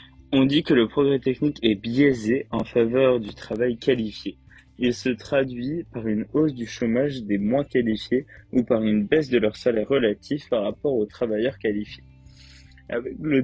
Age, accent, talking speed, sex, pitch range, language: 20-39, French, 175 wpm, male, 105-135 Hz, French